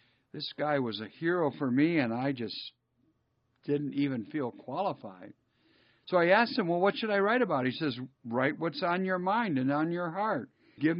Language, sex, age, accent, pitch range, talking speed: English, male, 60-79, American, 130-185 Hz, 195 wpm